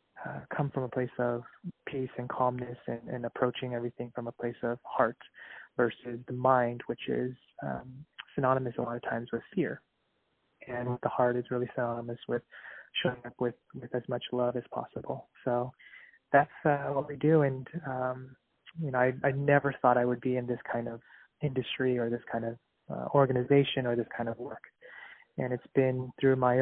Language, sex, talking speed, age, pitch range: English, male, 190 wpm, 20-39, 120-130 Hz